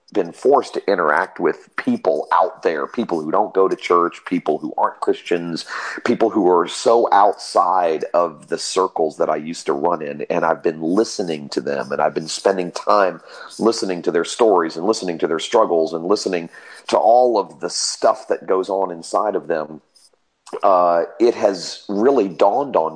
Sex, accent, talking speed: male, American, 185 wpm